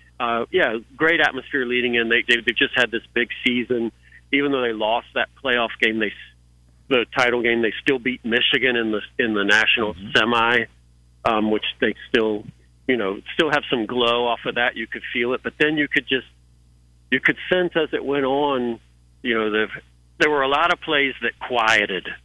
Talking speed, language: 200 wpm, English